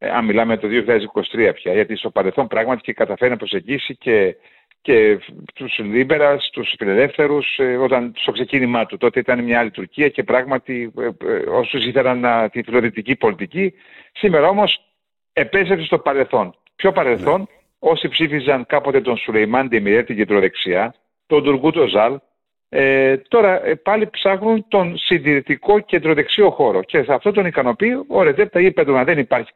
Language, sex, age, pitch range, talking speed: Greek, male, 50-69, 135-200 Hz, 150 wpm